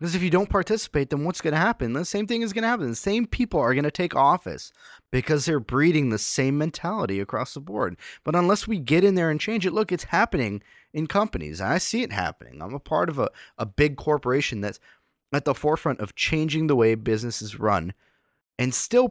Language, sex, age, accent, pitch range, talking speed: English, male, 30-49, American, 95-150 Hz, 225 wpm